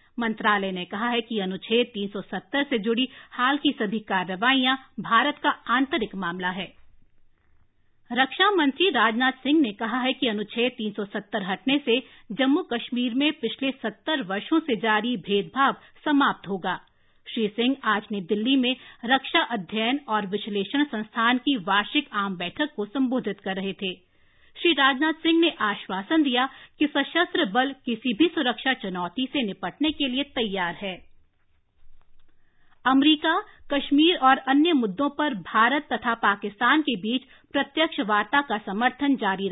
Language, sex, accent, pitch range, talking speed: English, female, Indian, 200-275 Hz, 135 wpm